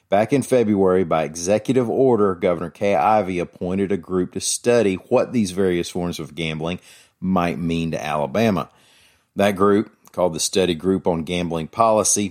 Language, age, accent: English, 40-59, American